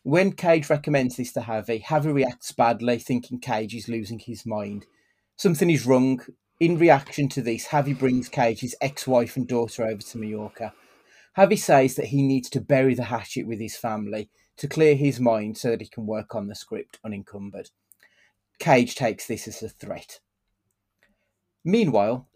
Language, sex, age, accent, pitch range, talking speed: English, male, 30-49, British, 110-140 Hz, 170 wpm